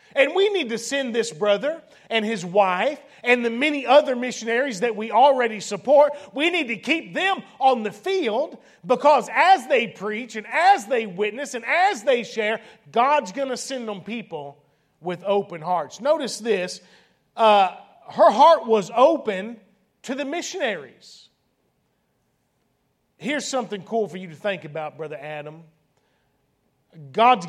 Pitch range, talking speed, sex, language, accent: 205-275 Hz, 150 wpm, male, English, American